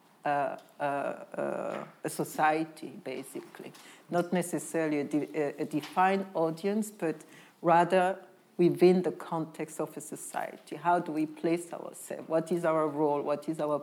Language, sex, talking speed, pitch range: English, female, 140 wpm, 155-185 Hz